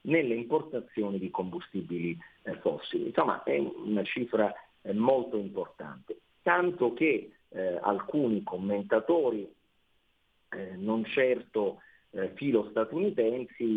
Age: 50-69